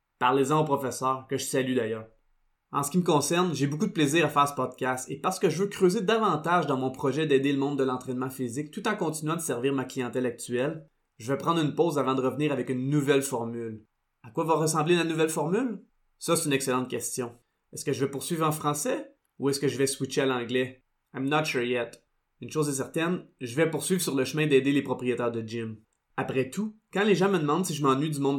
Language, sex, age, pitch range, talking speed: French, male, 20-39, 130-155 Hz, 240 wpm